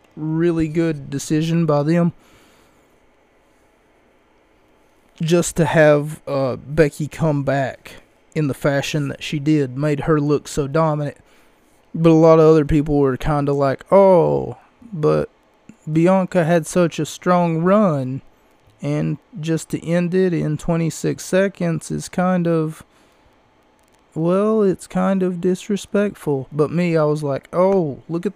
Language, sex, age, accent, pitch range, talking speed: English, male, 20-39, American, 145-180 Hz, 140 wpm